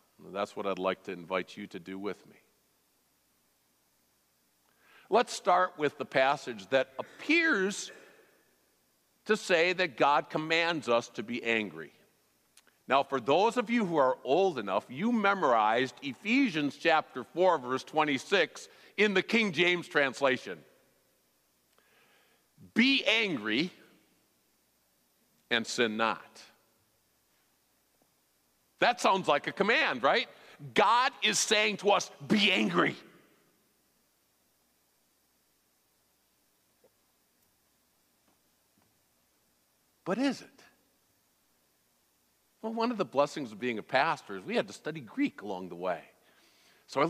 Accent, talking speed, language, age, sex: American, 115 wpm, English, 50-69, male